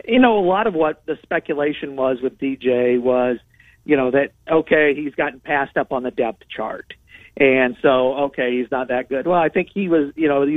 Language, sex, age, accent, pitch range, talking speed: English, male, 50-69, American, 130-160 Hz, 220 wpm